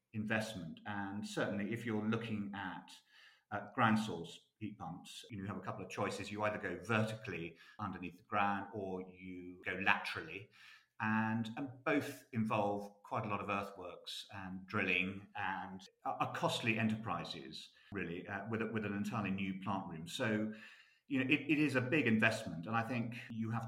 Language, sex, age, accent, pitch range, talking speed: English, male, 40-59, British, 95-110 Hz, 175 wpm